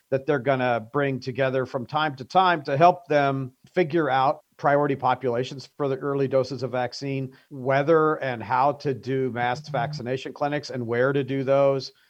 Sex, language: male, English